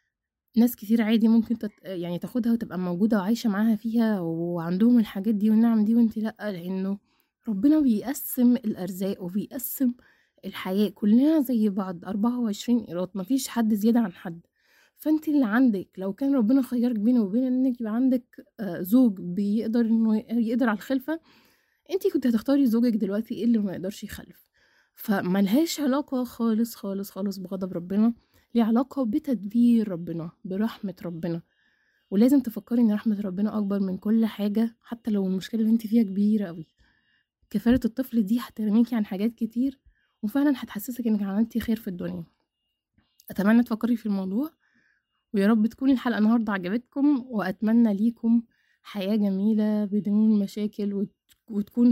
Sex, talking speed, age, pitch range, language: female, 140 wpm, 20-39, 200-240 Hz, Arabic